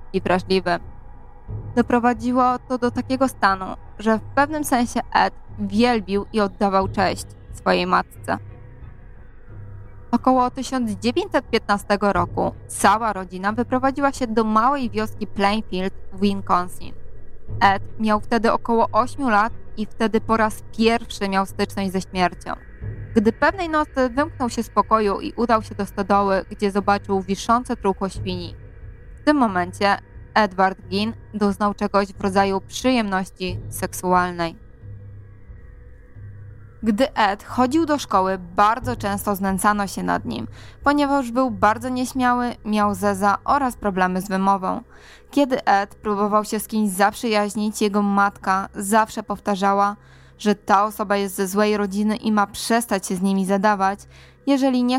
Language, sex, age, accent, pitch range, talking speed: Polish, female, 20-39, native, 190-230 Hz, 135 wpm